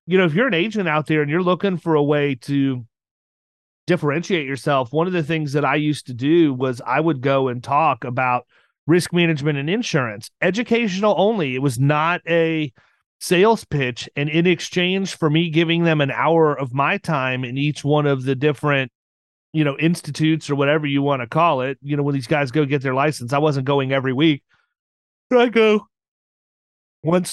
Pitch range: 140-170 Hz